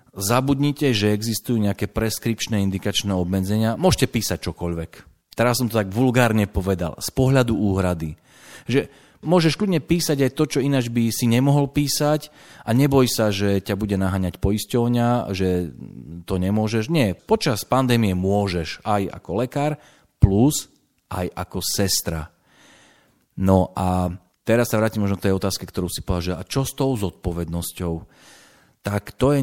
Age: 40-59